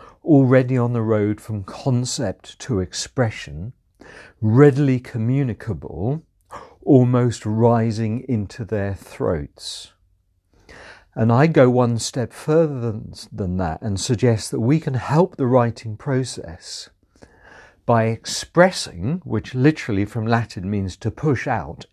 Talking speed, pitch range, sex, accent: 120 wpm, 100-130 Hz, male, British